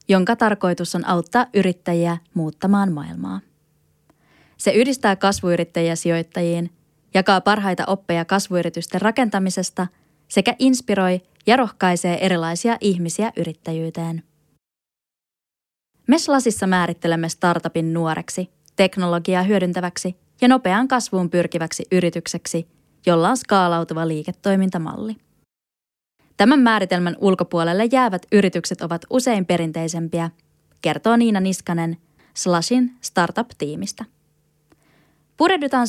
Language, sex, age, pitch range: Finnish, female, 20-39, 170-215 Hz